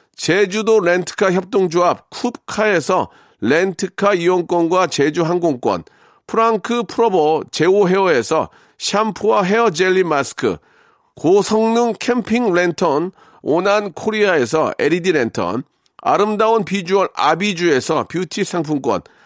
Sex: male